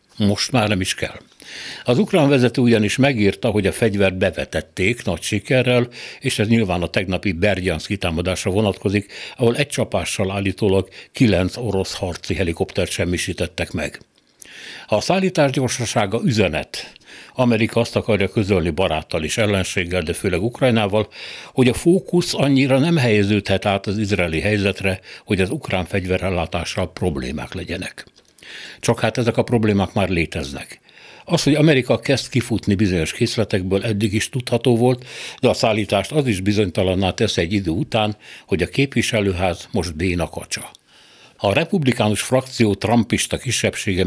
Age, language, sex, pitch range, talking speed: 60-79, Hungarian, male, 95-120 Hz, 140 wpm